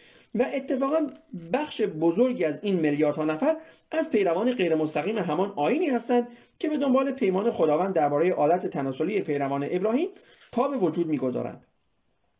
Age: 40-59